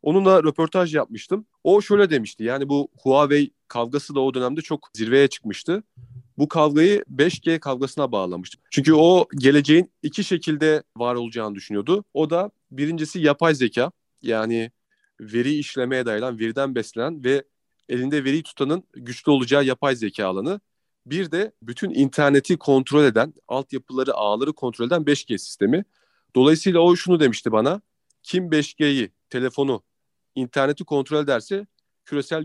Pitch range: 120-160 Hz